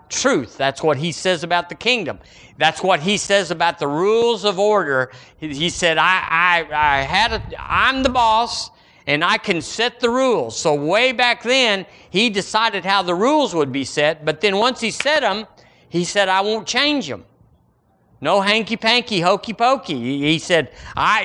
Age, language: 50-69, English